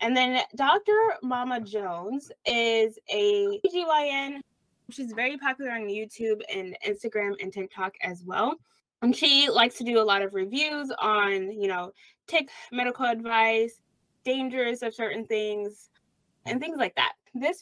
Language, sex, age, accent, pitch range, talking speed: English, female, 20-39, American, 210-290 Hz, 145 wpm